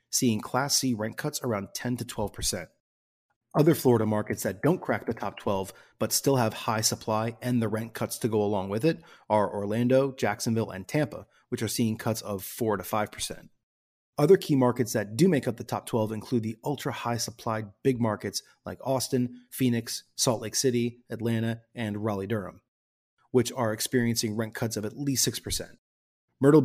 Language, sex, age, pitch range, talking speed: English, male, 30-49, 105-125 Hz, 185 wpm